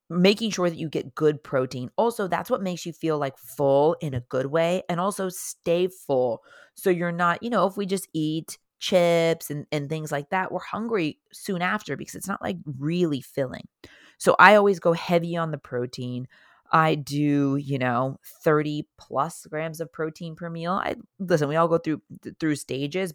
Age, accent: 30-49, American